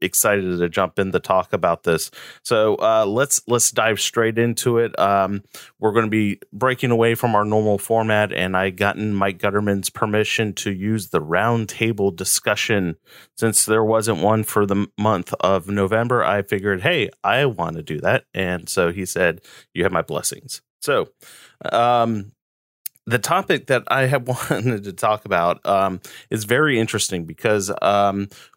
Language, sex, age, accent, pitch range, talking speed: English, male, 30-49, American, 95-115 Hz, 170 wpm